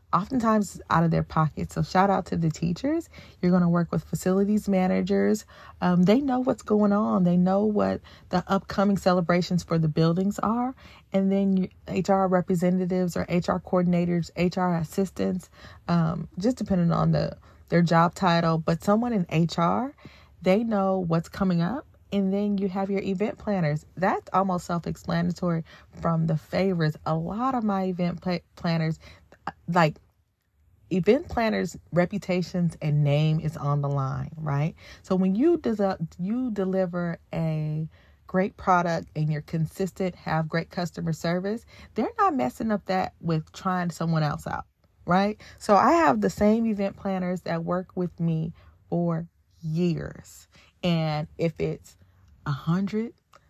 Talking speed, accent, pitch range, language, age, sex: 150 wpm, American, 165-195 Hz, English, 30-49, female